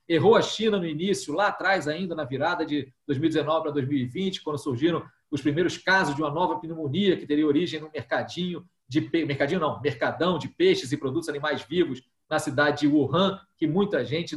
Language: Portuguese